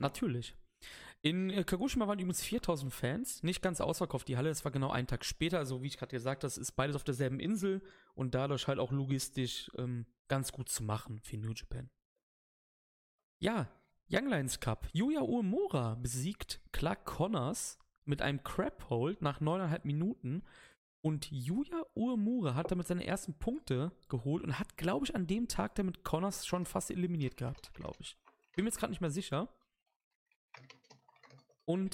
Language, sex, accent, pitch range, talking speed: German, male, German, 130-185 Hz, 170 wpm